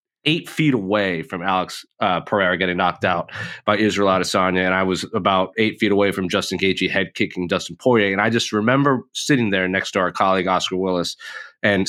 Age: 30-49